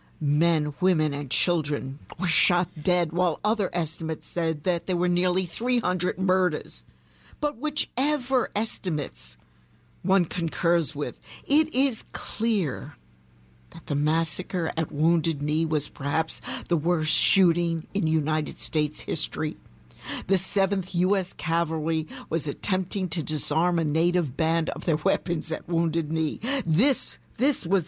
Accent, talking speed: American, 130 wpm